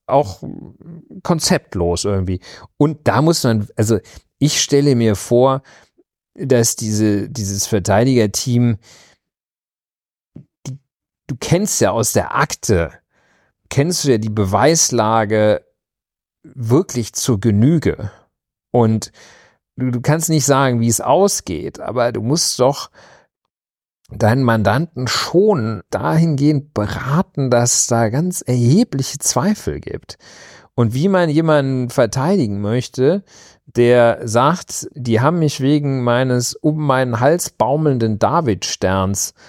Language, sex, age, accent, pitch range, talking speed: German, male, 40-59, German, 115-145 Hz, 110 wpm